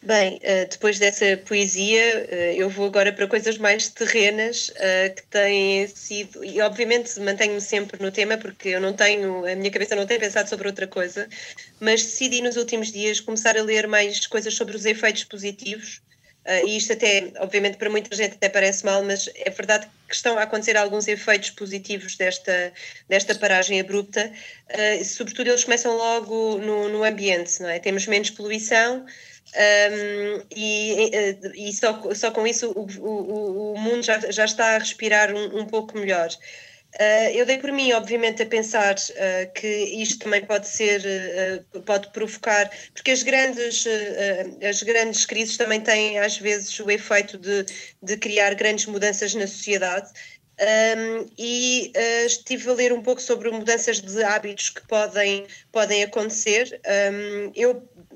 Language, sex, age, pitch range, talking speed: Portuguese, female, 20-39, 200-225 Hz, 155 wpm